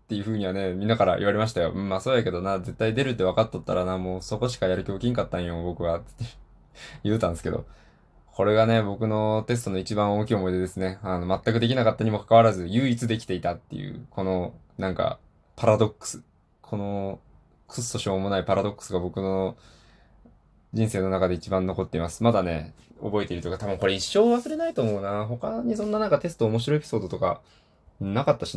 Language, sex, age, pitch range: Japanese, male, 20-39, 95-115 Hz